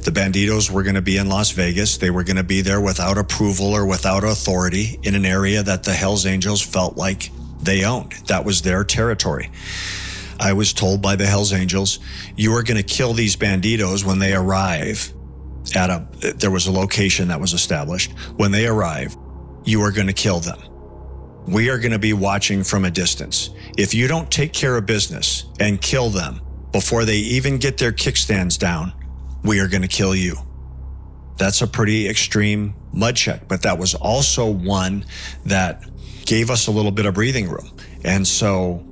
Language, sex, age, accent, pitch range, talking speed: English, male, 50-69, American, 90-105 Hz, 190 wpm